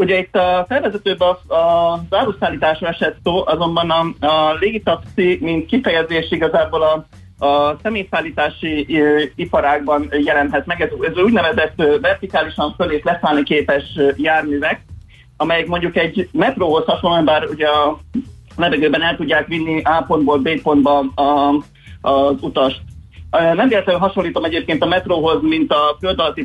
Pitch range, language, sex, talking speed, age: 145-180 Hz, Hungarian, male, 120 wpm, 30-49